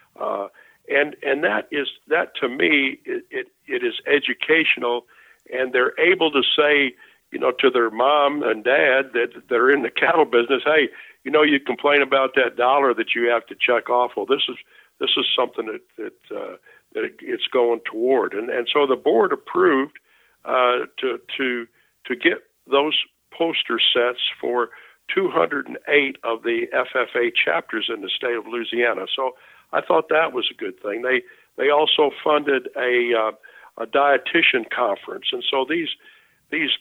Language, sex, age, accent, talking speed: English, male, 60-79, American, 175 wpm